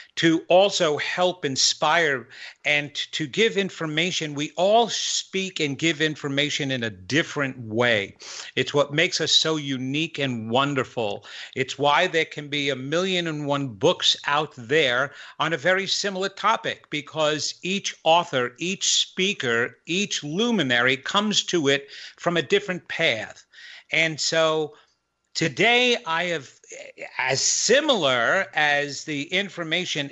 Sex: male